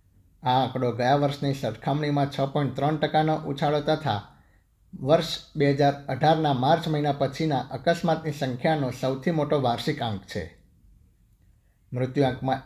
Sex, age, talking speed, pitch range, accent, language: male, 50-69, 115 wpm, 120-150 Hz, native, Gujarati